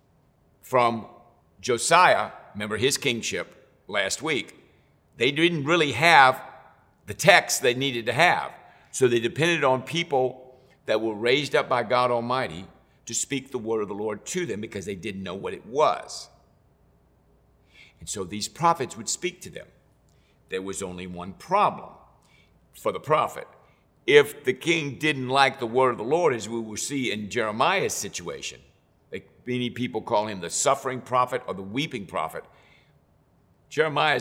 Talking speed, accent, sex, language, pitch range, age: 160 wpm, American, male, English, 105-140 Hz, 60-79